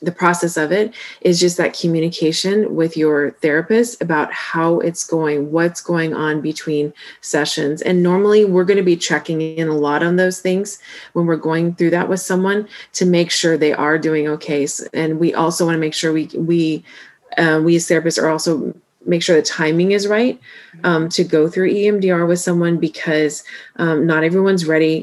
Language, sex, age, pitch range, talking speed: English, female, 30-49, 155-180 Hz, 190 wpm